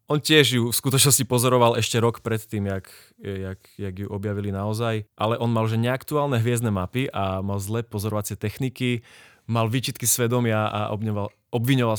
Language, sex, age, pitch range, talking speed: Slovak, male, 20-39, 100-120 Hz, 170 wpm